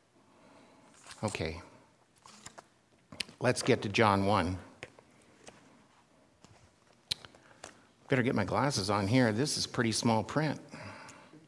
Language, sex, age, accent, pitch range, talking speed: English, male, 50-69, American, 115-140 Hz, 90 wpm